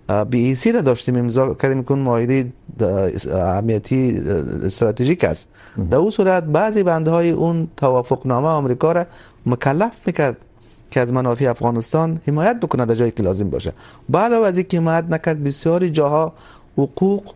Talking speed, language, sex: 140 wpm, Urdu, male